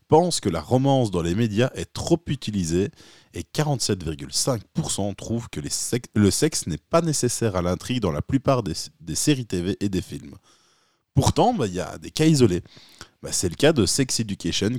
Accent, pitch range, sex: French, 85-125 Hz, male